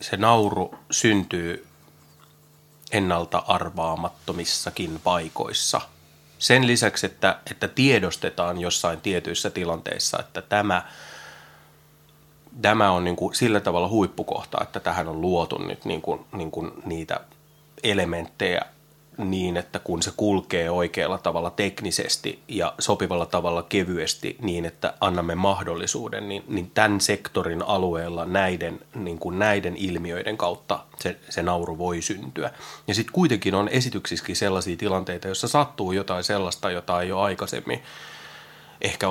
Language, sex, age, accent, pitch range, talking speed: Finnish, male, 30-49, native, 85-115 Hz, 125 wpm